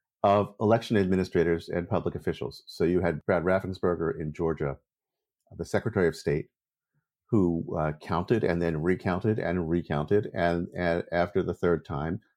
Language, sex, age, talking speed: English, male, 50-69, 150 wpm